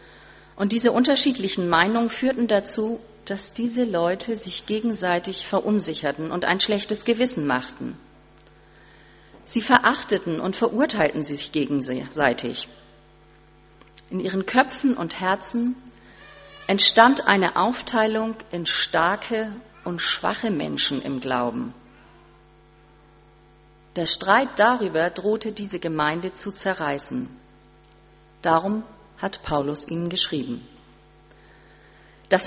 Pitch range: 160-220 Hz